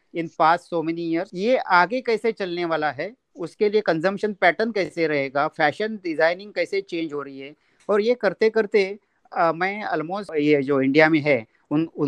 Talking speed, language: 180 wpm, Hindi